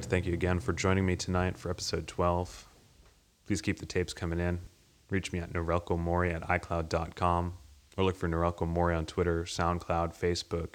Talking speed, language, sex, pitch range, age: 165 wpm, English, male, 85-95 Hz, 20-39